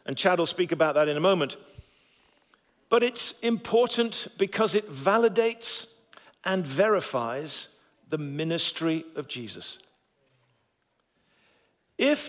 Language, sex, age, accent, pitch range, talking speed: English, male, 50-69, British, 165-225 Hz, 105 wpm